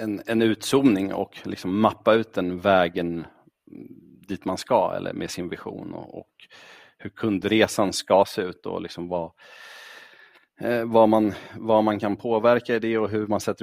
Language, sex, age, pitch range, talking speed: Swedish, male, 40-59, 95-115 Hz, 165 wpm